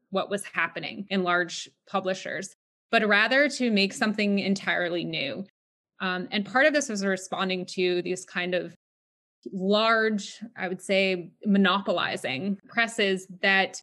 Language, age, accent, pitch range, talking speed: English, 20-39, American, 190-225 Hz, 135 wpm